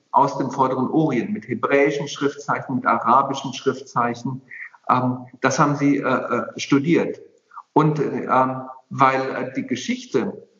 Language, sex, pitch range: German, male, 130-165 Hz